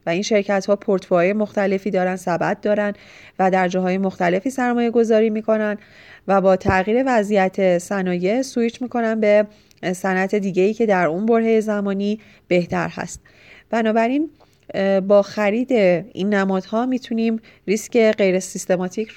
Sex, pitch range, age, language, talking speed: female, 185-225 Hz, 30-49, Persian, 130 wpm